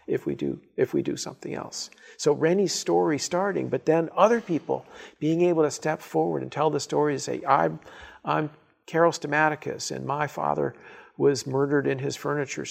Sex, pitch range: male, 135-160 Hz